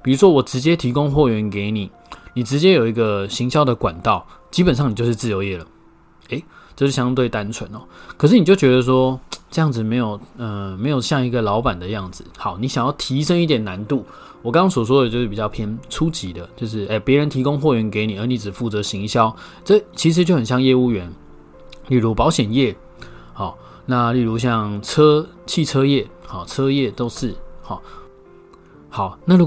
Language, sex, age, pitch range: Chinese, male, 20-39, 100-135 Hz